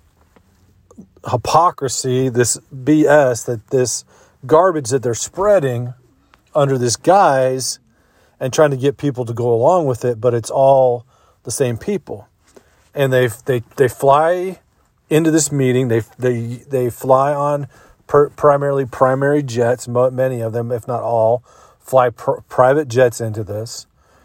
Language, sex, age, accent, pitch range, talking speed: English, male, 40-59, American, 120-140 Hz, 135 wpm